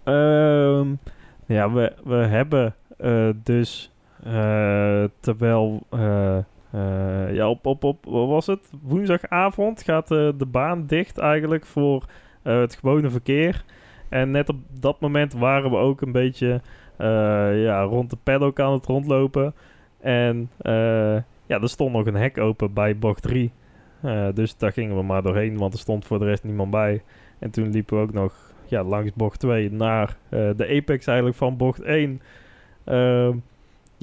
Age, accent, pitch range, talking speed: 20-39, Dutch, 110-145 Hz, 165 wpm